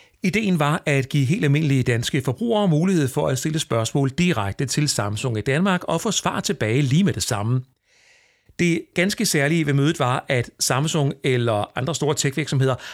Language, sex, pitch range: Danish, male, 125-180 Hz